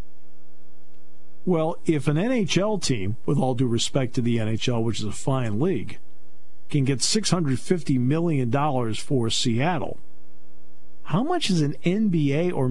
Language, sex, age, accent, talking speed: English, male, 50-69, American, 135 wpm